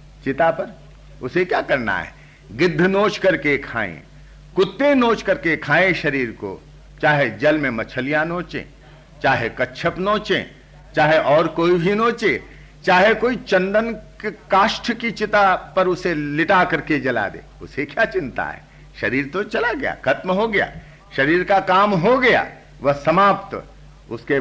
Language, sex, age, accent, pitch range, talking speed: Hindi, male, 60-79, native, 140-180 Hz, 145 wpm